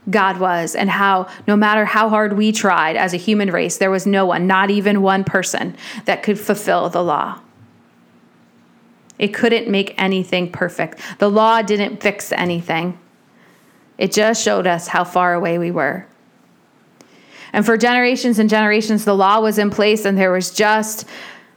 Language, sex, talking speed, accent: English, female, 165 wpm, American